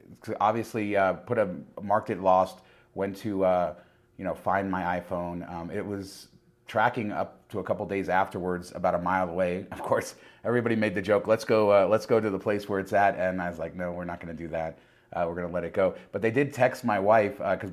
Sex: male